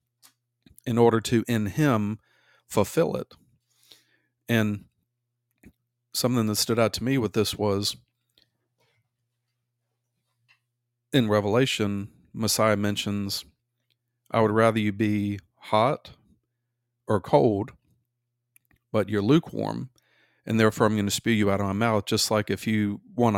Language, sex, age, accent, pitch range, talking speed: English, male, 40-59, American, 105-120 Hz, 125 wpm